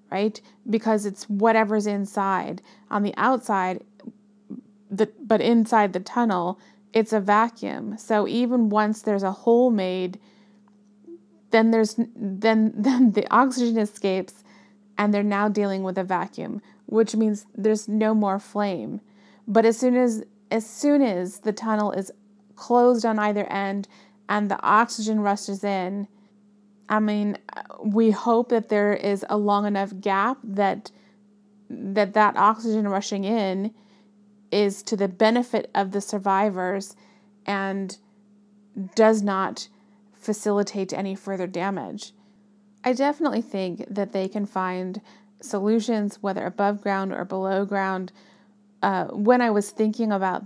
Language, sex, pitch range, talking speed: English, female, 200-220 Hz, 135 wpm